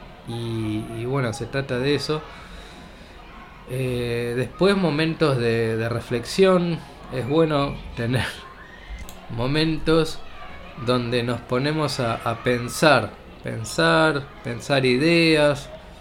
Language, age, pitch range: Spanish, 20-39, 120-160 Hz